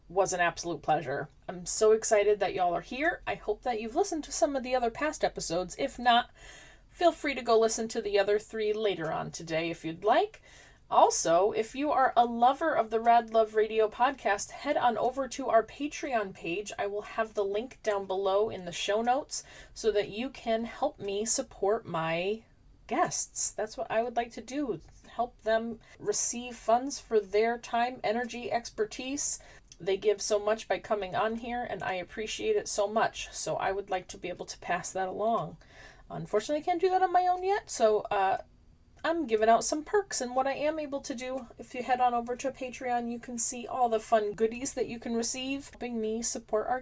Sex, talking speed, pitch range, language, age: female, 210 wpm, 210-270 Hz, English, 30-49